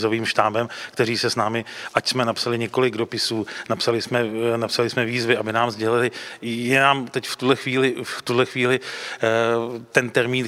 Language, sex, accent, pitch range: Czech, male, native, 115-125 Hz